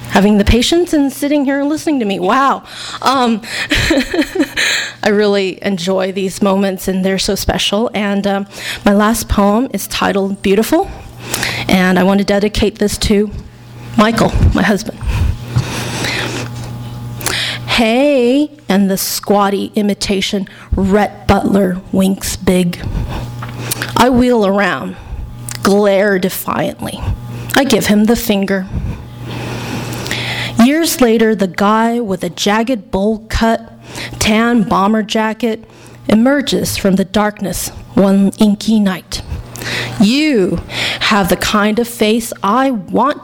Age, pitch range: 30-49, 190-235 Hz